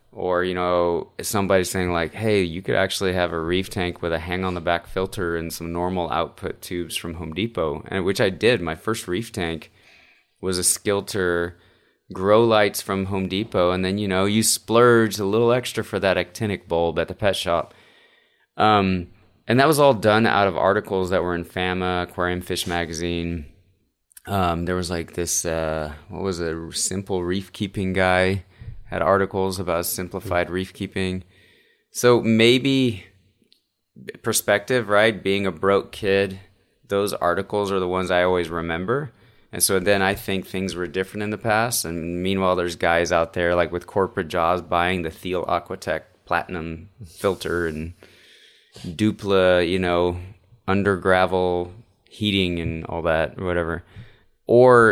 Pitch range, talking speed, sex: 85-100 Hz, 165 wpm, male